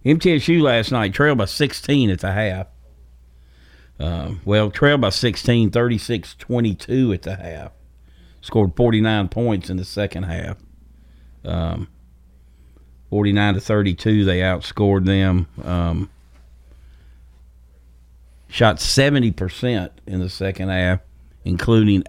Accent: American